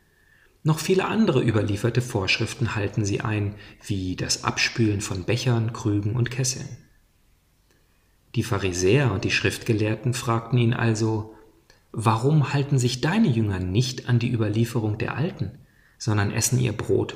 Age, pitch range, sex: 40-59, 105-125 Hz, male